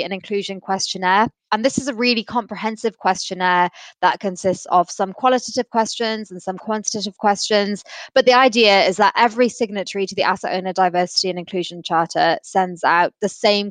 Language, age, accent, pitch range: English, 20-39, British, 180-210 Hz